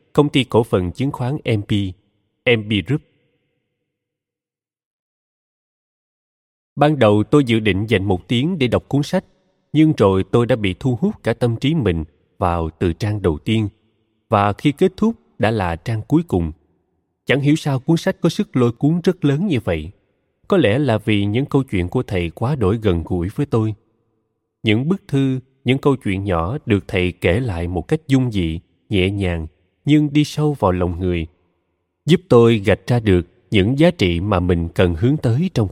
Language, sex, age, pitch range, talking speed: Vietnamese, male, 20-39, 90-135 Hz, 185 wpm